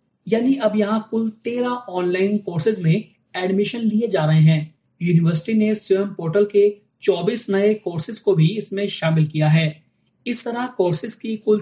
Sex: male